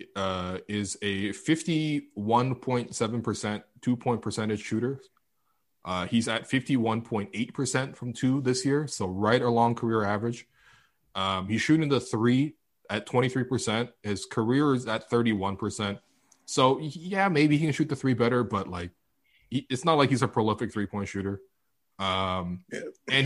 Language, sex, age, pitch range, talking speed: English, male, 20-39, 100-130 Hz, 150 wpm